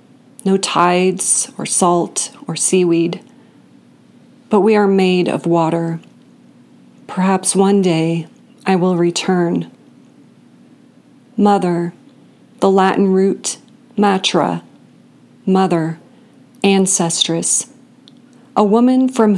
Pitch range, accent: 175-215 Hz, American